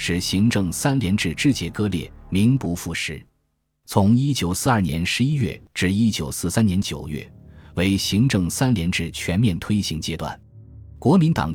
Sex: male